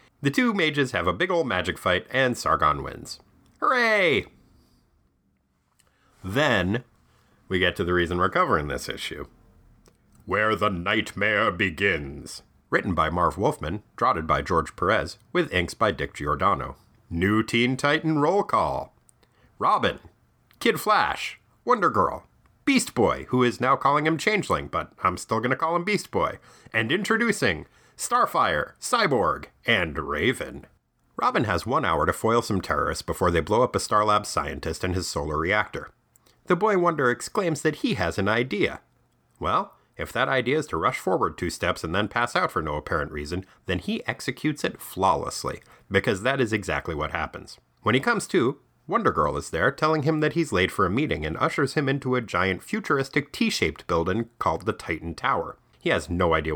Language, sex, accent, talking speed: English, male, American, 170 wpm